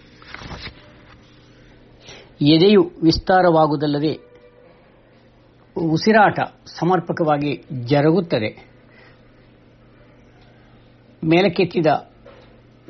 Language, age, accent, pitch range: Kannada, 60-79, native, 125-165 Hz